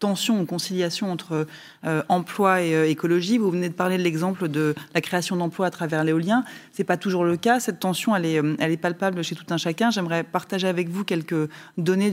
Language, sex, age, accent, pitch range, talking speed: French, female, 20-39, French, 165-195 Hz, 220 wpm